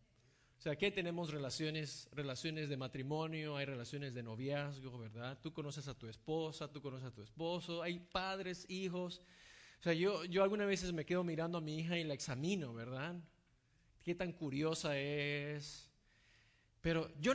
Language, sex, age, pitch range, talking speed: English, male, 30-49, 135-175 Hz, 165 wpm